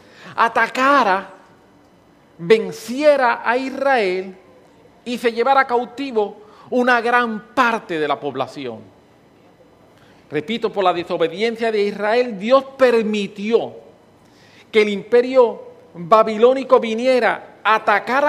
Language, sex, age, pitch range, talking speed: English, male, 40-59, 190-255 Hz, 95 wpm